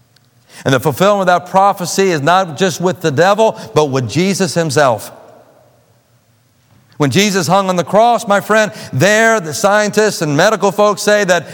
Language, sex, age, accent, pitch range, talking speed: English, male, 50-69, American, 165-210 Hz, 165 wpm